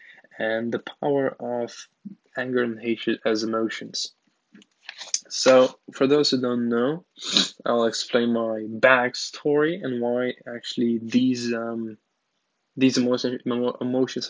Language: English